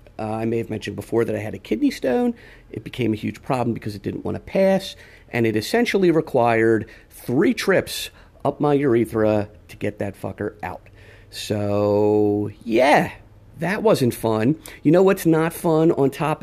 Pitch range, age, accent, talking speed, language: 105-145 Hz, 50-69, American, 180 wpm, English